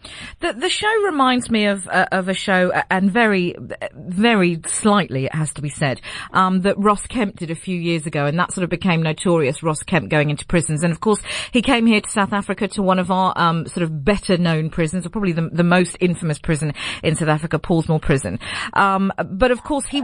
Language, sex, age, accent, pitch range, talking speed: English, female, 40-59, British, 160-220 Hz, 230 wpm